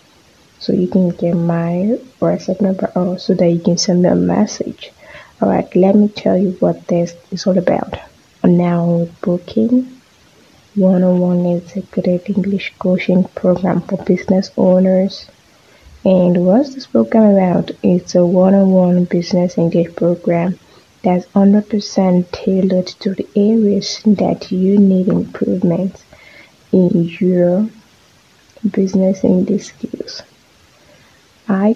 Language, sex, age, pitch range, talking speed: English, female, 20-39, 180-210 Hz, 130 wpm